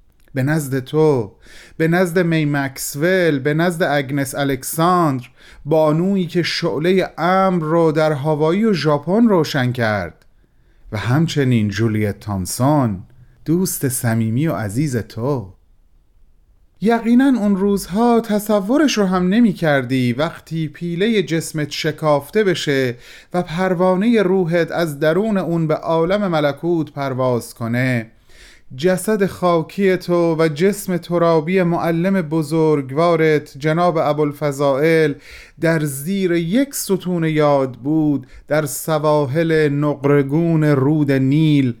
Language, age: Persian, 30-49